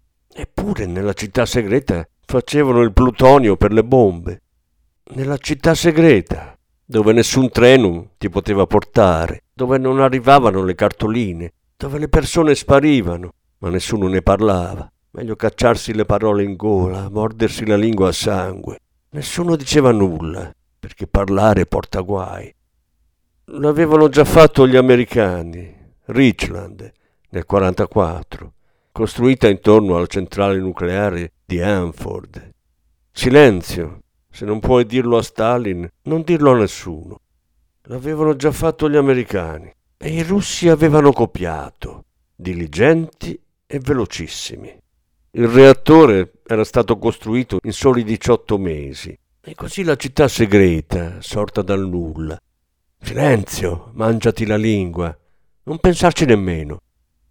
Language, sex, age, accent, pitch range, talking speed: Italian, male, 50-69, native, 90-130 Hz, 120 wpm